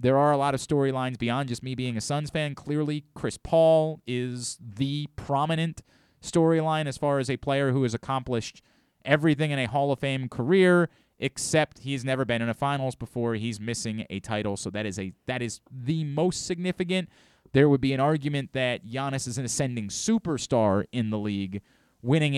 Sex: male